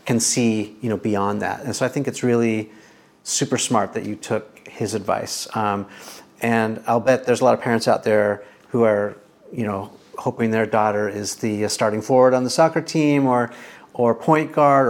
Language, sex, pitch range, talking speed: English, male, 110-140 Hz, 195 wpm